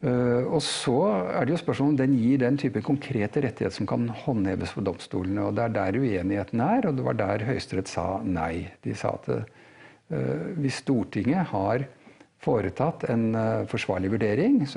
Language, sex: English, male